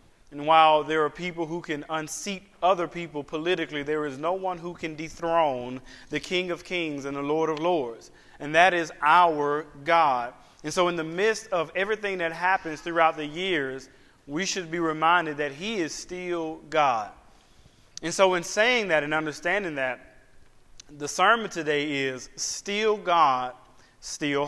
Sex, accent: male, American